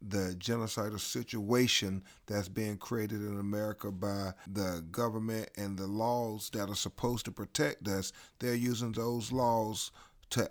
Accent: American